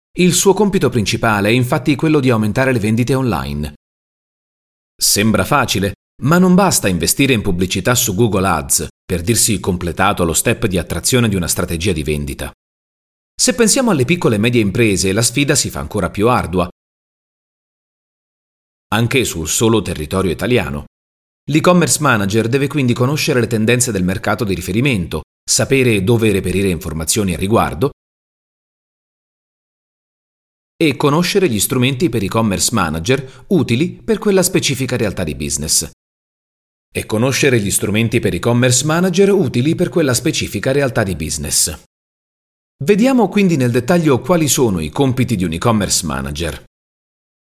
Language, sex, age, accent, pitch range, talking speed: Italian, male, 30-49, native, 90-140 Hz, 140 wpm